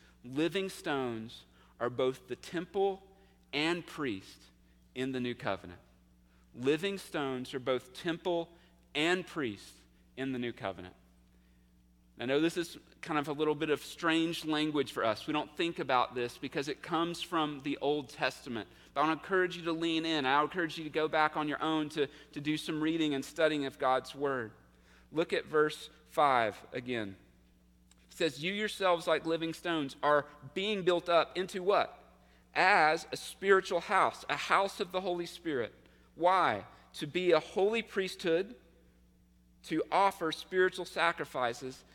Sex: male